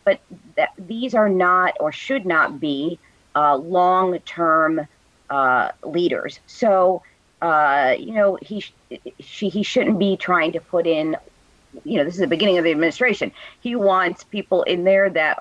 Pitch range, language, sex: 155-195 Hz, English, female